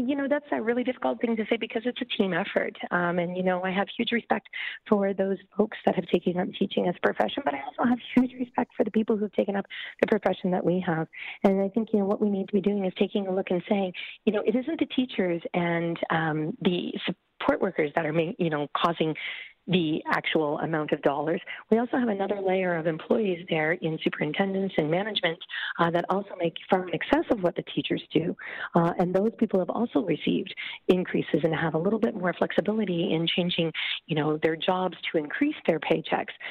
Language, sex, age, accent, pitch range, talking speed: English, female, 40-59, American, 170-220 Hz, 225 wpm